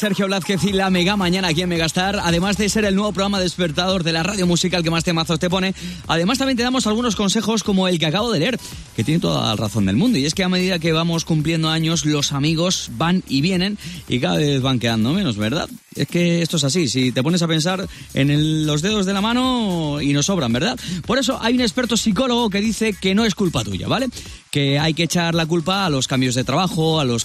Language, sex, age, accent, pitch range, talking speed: Spanish, male, 20-39, Spanish, 150-210 Hz, 250 wpm